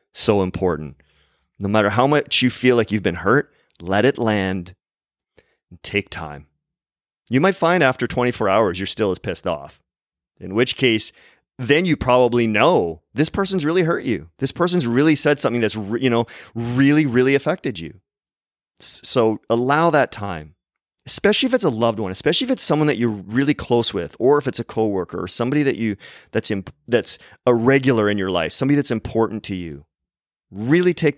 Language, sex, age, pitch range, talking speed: English, male, 30-49, 100-140 Hz, 190 wpm